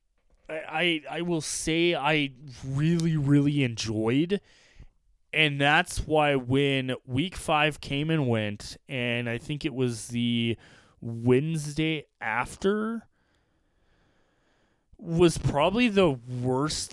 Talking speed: 105 wpm